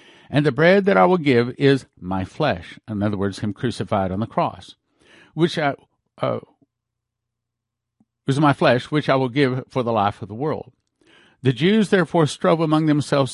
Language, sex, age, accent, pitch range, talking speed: English, male, 50-69, American, 115-155 Hz, 180 wpm